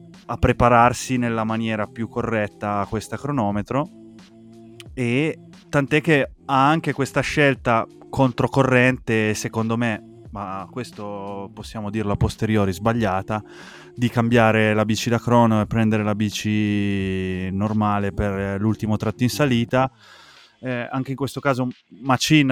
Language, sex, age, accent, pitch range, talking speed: Italian, male, 20-39, native, 105-120 Hz, 125 wpm